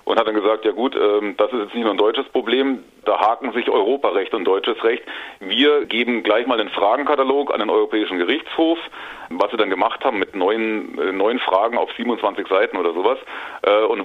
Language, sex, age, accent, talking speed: German, male, 40-59, German, 195 wpm